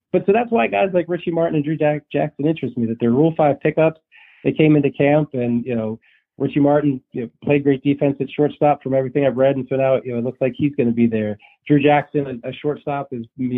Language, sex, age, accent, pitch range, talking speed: English, male, 40-59, American, 110-135 Hz, 250 wpm